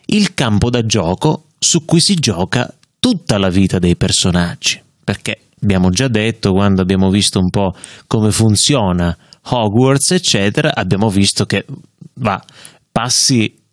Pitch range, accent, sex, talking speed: 100-145 Hz, native, male, 135 wpm